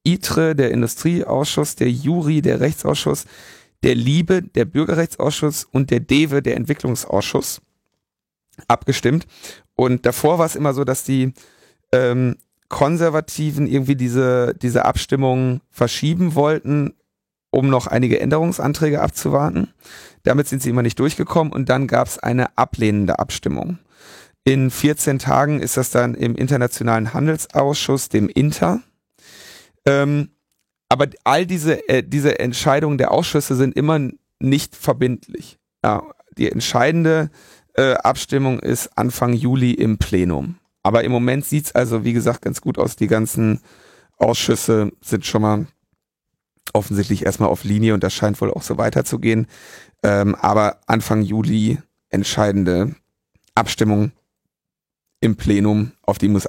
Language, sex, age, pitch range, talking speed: German, male, 40-59, 110-145 Hz, 135 wpm